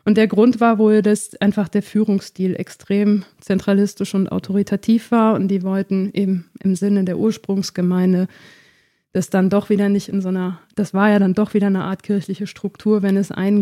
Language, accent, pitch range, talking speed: German, German, 200-225 Hz, 190 wpm